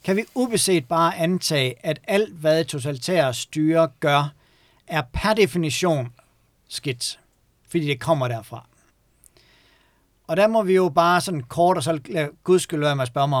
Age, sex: 60-79, male